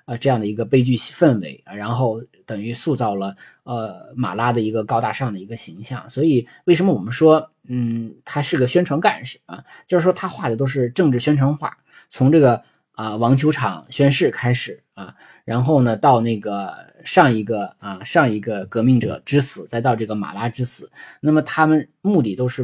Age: 20-39